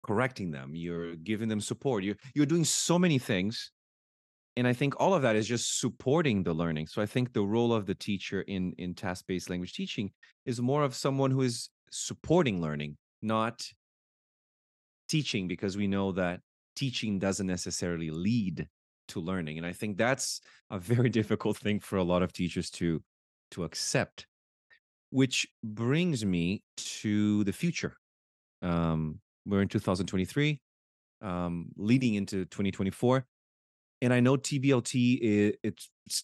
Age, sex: 30-49, male